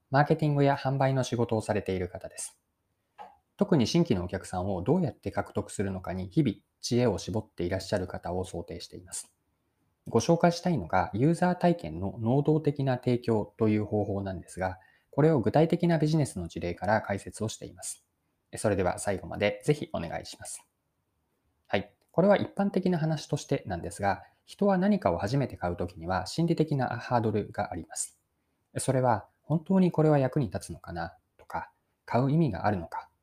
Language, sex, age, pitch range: Japanese, male, 20-39, 95-155 Hz